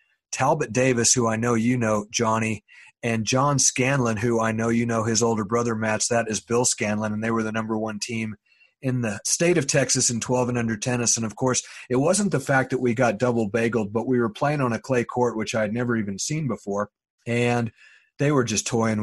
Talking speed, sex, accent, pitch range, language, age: 230 wpm, male, American, 110-125 Hz, English, 40-59